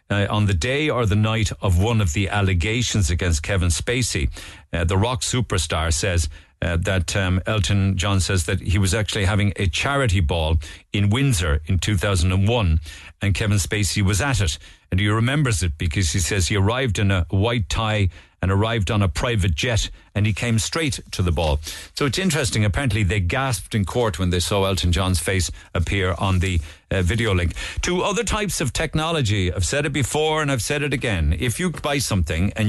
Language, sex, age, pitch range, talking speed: English, male, 50-69, 90-115 Hz, 200 wpm